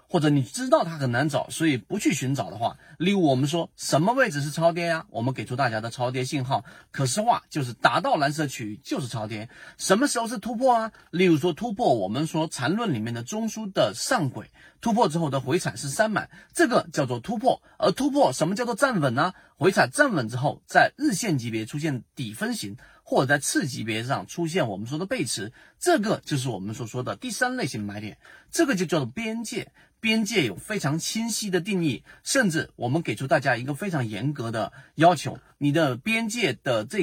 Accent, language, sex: native, Chinese, male